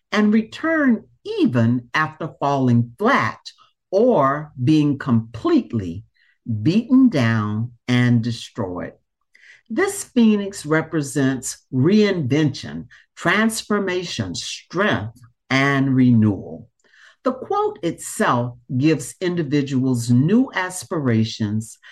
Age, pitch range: 60-79, 115-190 Hz